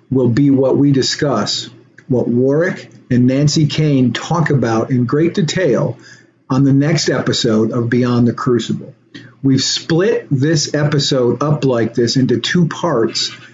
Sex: male